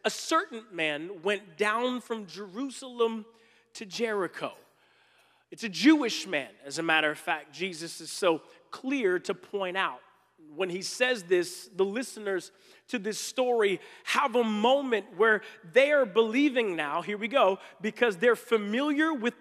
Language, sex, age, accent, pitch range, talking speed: English, male, 40-59, American, 195-260 Hz, 150 wpm